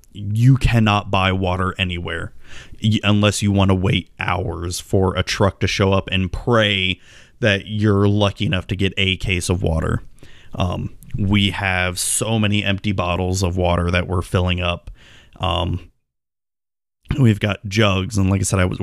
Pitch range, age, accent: 95-110 Hz, 30-49, American